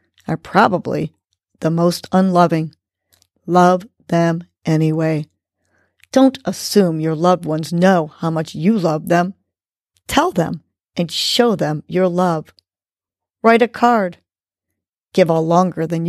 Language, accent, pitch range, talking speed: English, American, 150-195 Hz, 125 wpm